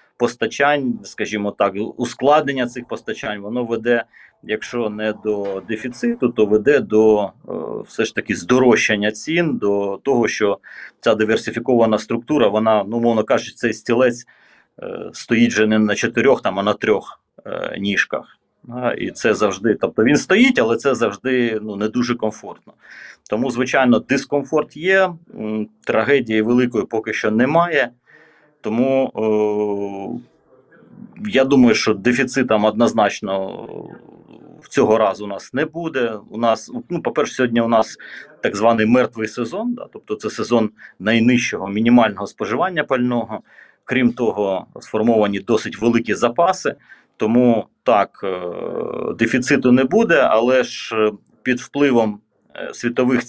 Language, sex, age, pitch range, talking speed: Ukrainian, male, 30-49, 105-125 Hz, 125 wpm